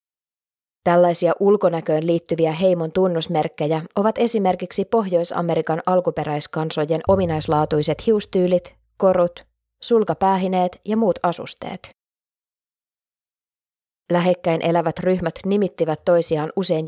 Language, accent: Finnish, native